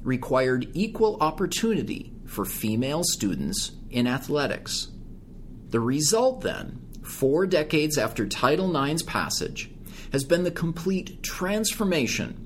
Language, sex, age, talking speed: English, male, 40-59, 105 wpm